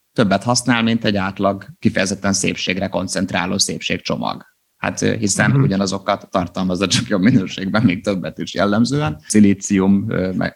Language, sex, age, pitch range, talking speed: Hungarian, male, 30-49, 95-115 Hz, 130 wpm